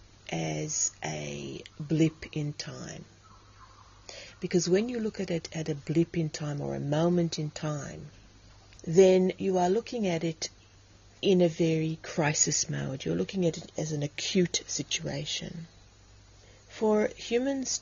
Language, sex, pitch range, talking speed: English, female, 105-175 Hz, 140 wpm